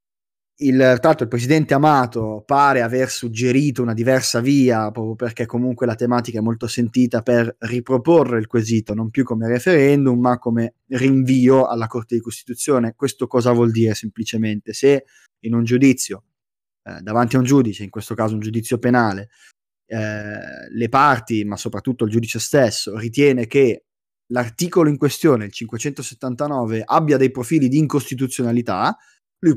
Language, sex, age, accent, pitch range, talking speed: Italian, male, 20-39, native, 115-135 Hz, 150 wpm